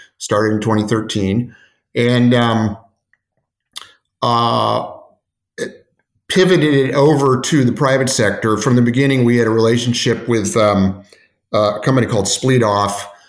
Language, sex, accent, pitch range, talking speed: English, male, American, 105-125 Hz, 125 wpm